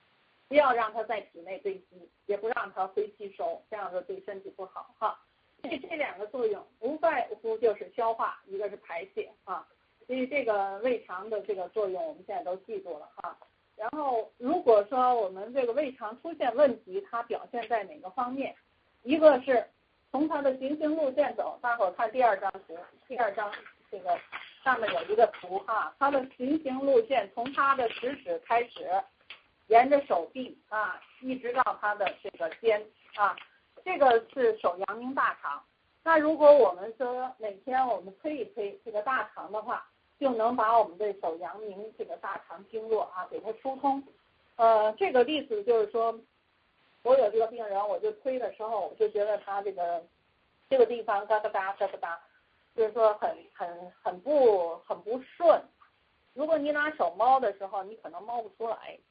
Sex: female